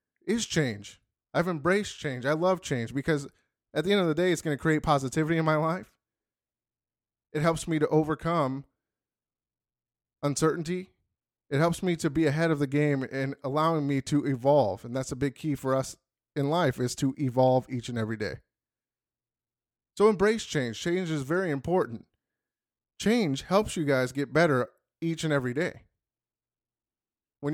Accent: American